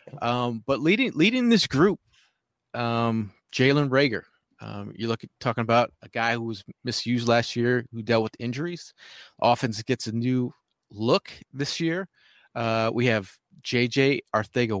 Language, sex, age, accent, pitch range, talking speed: English, male, 30-49, American, 110-135 Hz, 150 wpm